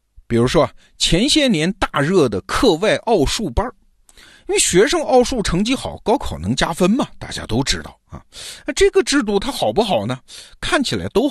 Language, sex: Chinese, male